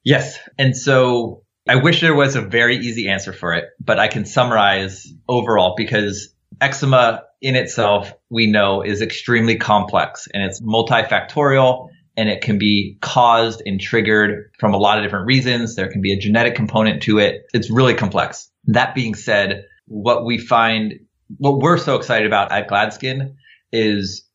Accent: American